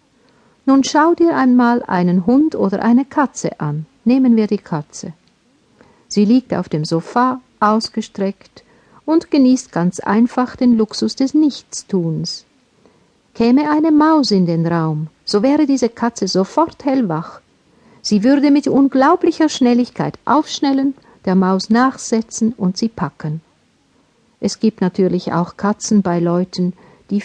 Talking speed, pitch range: 130 wpm, 185-255 Hz